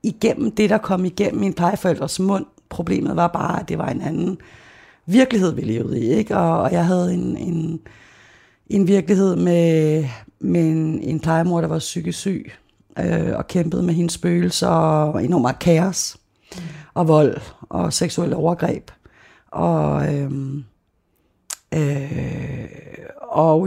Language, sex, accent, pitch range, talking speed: Danish, female, native, 150-185 Hz, 140 wpm